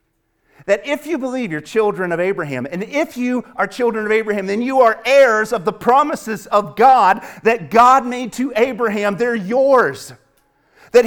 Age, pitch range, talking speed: 40-59, 160-250 Hz, 175 wpm